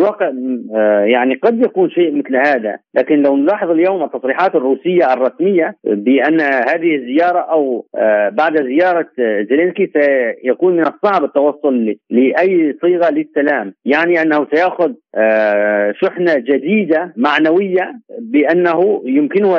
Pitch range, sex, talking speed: 130-180 Hz, male, 105 wpm